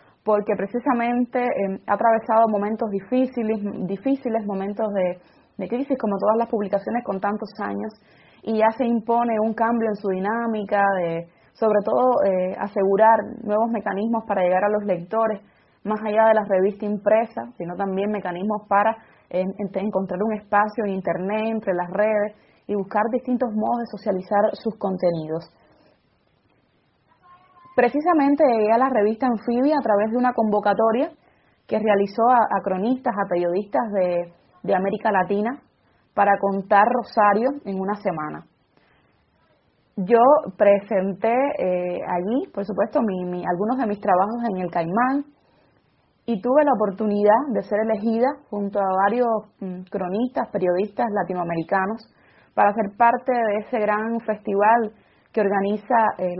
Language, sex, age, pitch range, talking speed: Spanish, female, 20-39, 195-230 Hz, 145 wpm